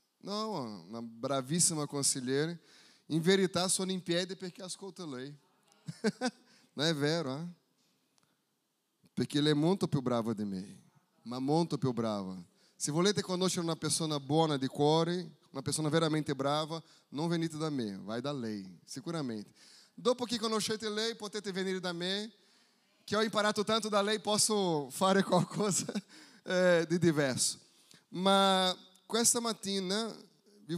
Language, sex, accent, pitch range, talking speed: Italian, male, Brazilian, 145-200 Hz, 145 wpm